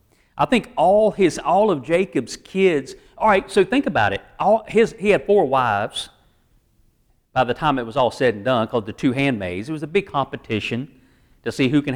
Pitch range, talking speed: 125-205 Hz, 205 wpm